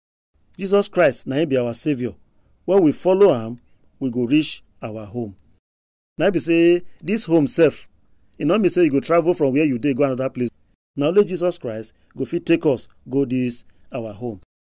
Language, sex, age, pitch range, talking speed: English, male, 40-59, 120-175 Hz, 195 wpm